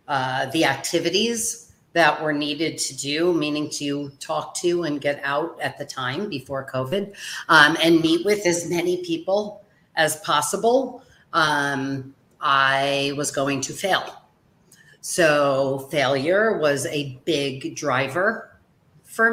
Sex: female